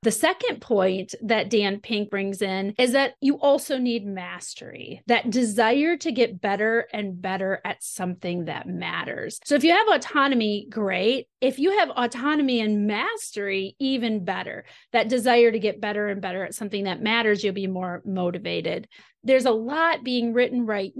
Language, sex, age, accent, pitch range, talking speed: English, female, 30-49, American, 200-245 Hz, 170 wpm